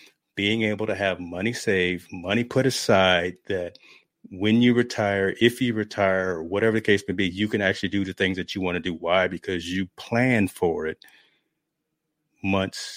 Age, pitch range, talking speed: 30-49, 95-120 Hz, 180 wpm